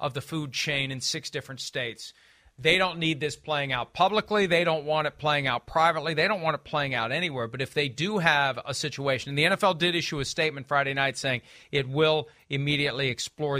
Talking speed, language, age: 220 wpm, English, 40-59